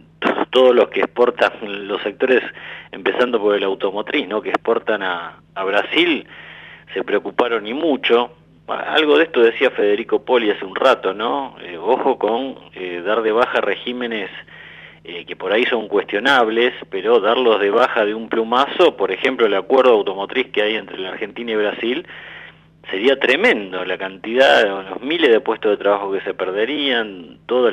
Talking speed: 170 wpm